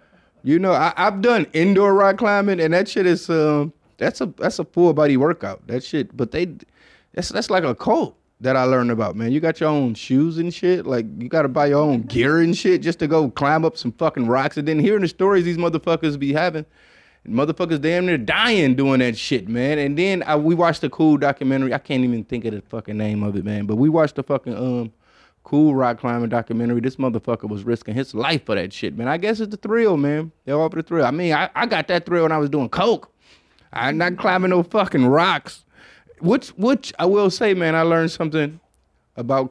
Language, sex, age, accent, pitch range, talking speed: English, male, 20-39, American, 125-180 Hz, 230 wpm